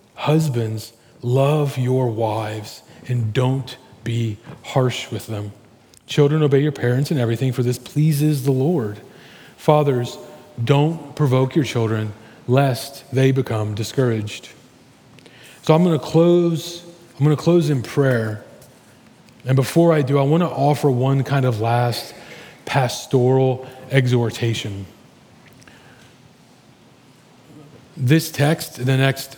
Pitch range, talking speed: 120-145 Hz, 125 wpm